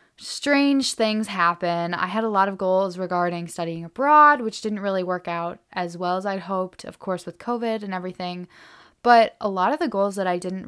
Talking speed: 210 wpm